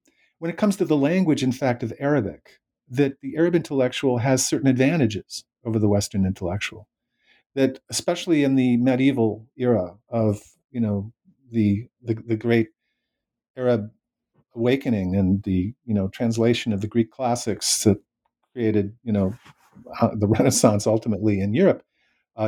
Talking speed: 145 wpm